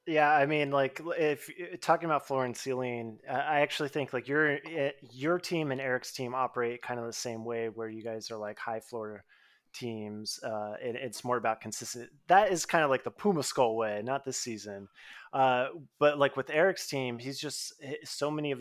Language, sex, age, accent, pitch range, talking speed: English, male, 20-39, American, 110-140 Hz, 210 wpm